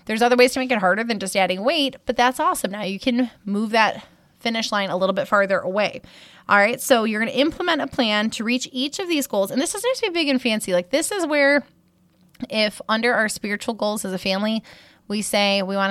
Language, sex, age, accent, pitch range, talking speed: English, female, 20-39, American, 200-260 Hz, 250 wpm